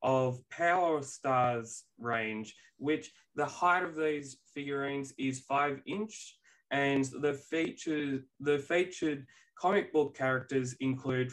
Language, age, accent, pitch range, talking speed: English, 20-39, Australian, 130-155 Hz, 115 wpm